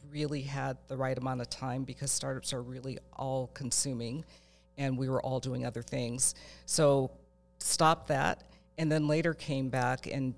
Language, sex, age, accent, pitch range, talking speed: English, female, 50-69, American, 125-145 Hz, 170 wpm